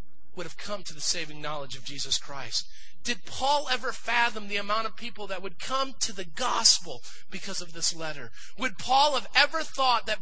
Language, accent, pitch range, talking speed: English, American, 170-230 Hz, 200 wpm